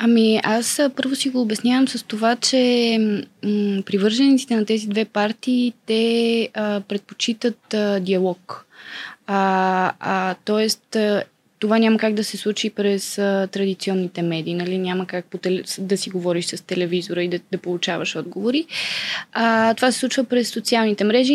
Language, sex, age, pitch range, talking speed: Bulgarian, female, 20-39, 200-240 Hz, 145 wpm